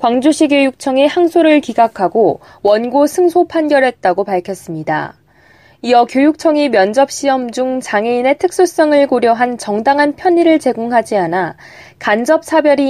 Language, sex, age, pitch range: Korean, female, 20-39, 215-290 Hz